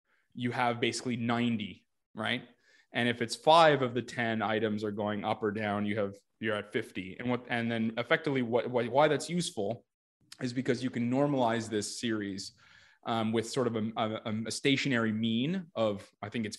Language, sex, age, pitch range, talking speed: English, male, 20-39, 110-130 Hz, 190 wpm